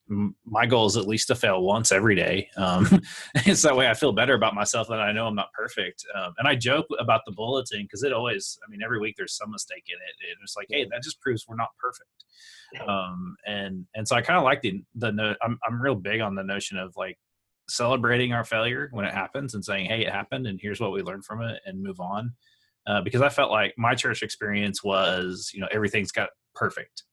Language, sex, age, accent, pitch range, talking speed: English, male, 20-39, American, 95-120 Hz, 240 wpm